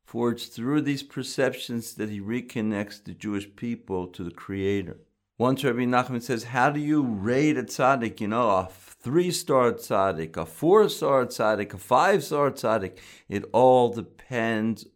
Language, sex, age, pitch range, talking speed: English, male, 50-69, 100-120 Hz, 155 wpm